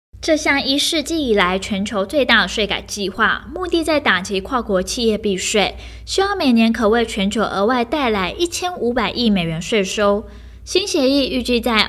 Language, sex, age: Chinese, female, 20-39